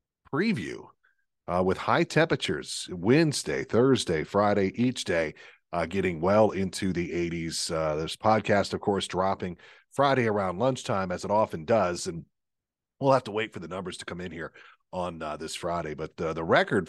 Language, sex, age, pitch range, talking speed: English, male, 40-59, 90-125 Hz, 175 wpm